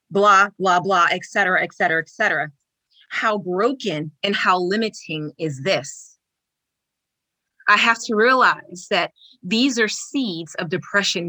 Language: English